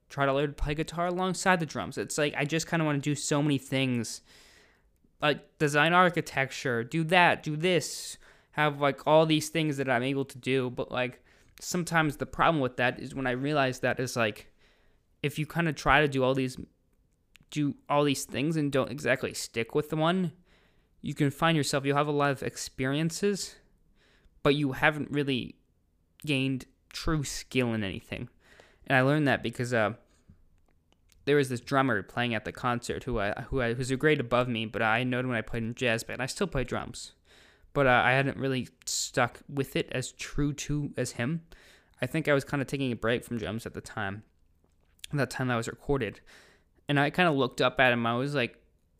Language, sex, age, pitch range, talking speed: English, male, 20-39, 120-150 Hz, 205 wpm